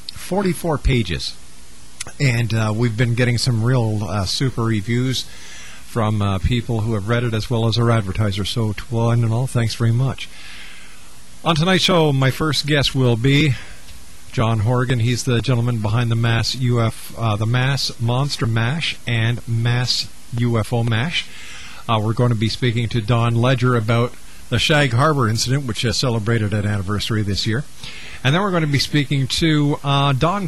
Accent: American